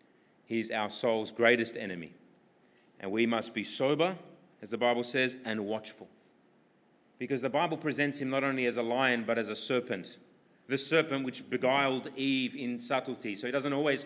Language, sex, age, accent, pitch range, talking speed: English, male, 30-49, Australian, 115-150 Hz, 175 wpm